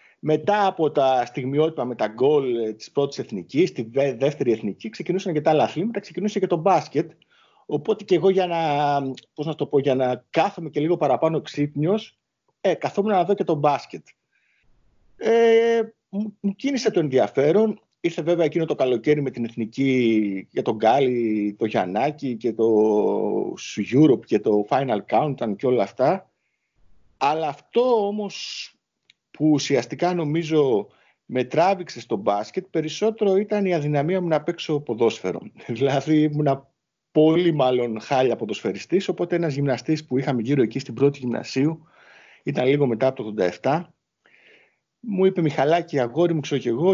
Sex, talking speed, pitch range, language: male, 155 wpm, 130-180 Hz, Greek